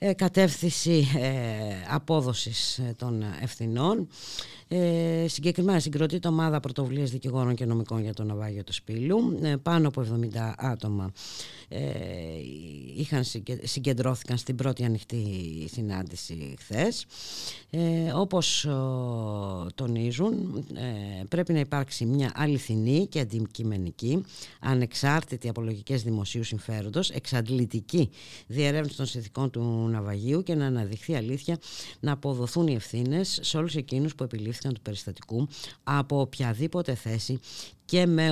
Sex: female